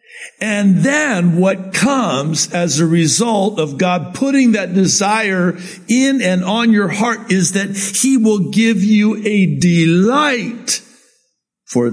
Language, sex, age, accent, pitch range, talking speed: English, male, 60-79, American, 155-220 Hz, 130 wpm